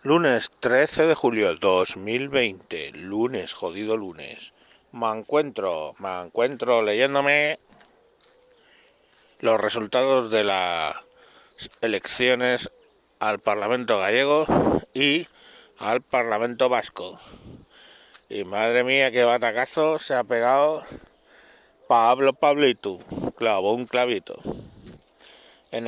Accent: Spanish